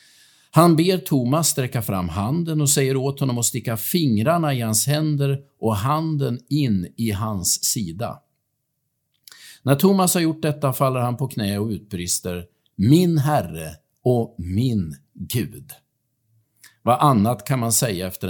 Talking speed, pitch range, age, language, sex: 145 wpm, 110-155 Hz, 50-69, Swedish, male